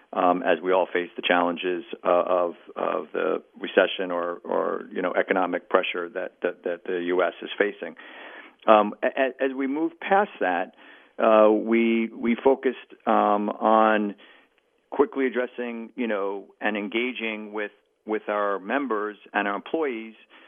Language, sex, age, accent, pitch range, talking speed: English, male, 50-69, American, 105-115 Hz, 145 wpm